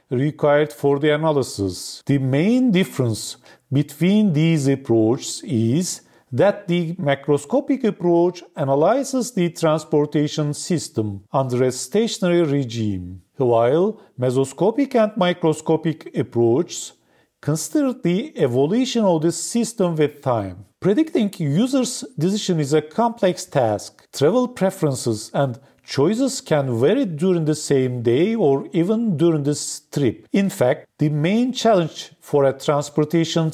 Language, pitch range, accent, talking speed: English, 135-190 Hz, Turkish, 120 wpm